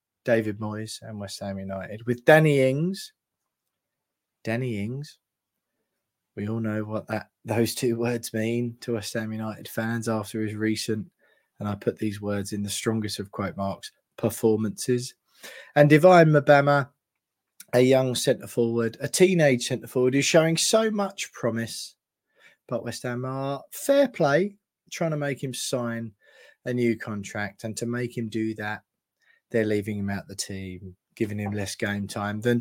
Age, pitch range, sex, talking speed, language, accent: 20-39, 105-130 Hz, male, 160 wpm, English, British